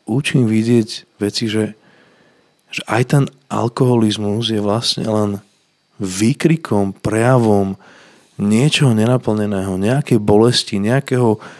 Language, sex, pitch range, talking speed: Slovak, male, 100-115 Hz, 95 wpm